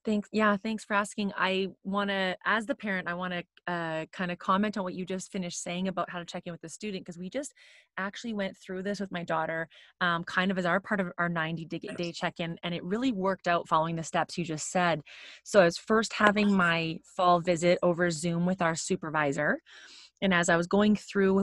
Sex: female